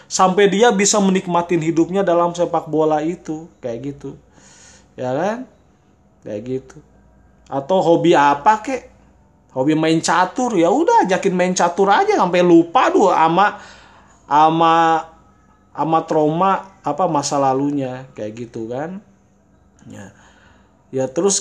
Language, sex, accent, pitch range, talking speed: Indonesian, male, native, 135-185 Hz, 125 wpm